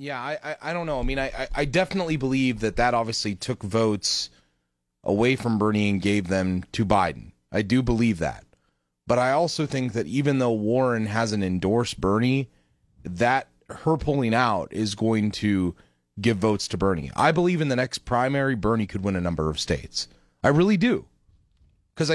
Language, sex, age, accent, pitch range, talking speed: English, male, 30-49, American, 105-150 Hz, 185 wpm